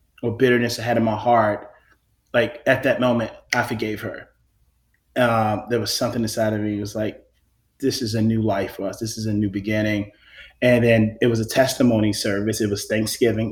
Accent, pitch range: American, 110-120 Hz